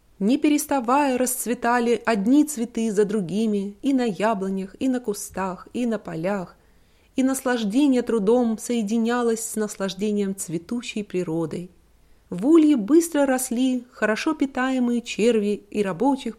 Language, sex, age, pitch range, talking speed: English, female, 30-49, 195-260 Hz, 120 wpm